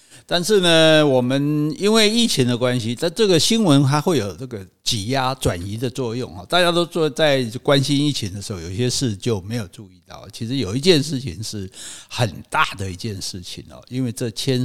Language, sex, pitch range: Chinese, male, 105-145 Hz